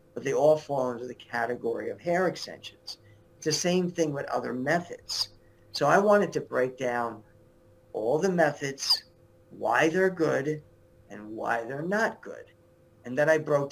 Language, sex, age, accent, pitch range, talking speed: English, male, 50-69, American, 115-170 Hz, 165 wpm